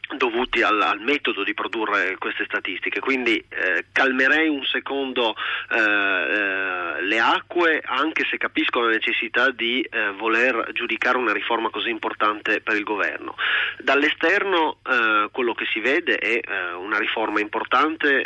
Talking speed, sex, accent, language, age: 140 wpm, male, native, Italian, 30-49